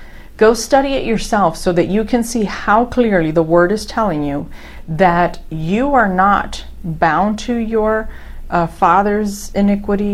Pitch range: 165-205 Hz